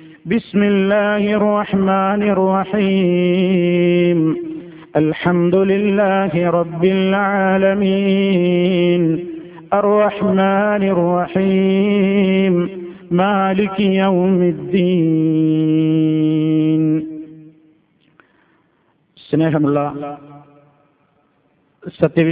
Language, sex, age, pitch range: Malayalam, male, 50-69, 150-180 Hz